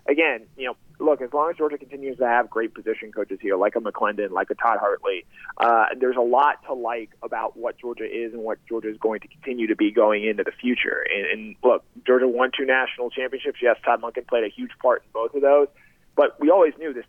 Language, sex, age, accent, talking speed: English, male, 30-49, American, 240 wpm